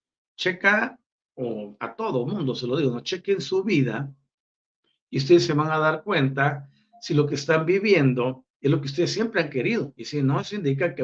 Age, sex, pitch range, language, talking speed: 50-69, male, 130-180 Hz, Spanish, 200 wpm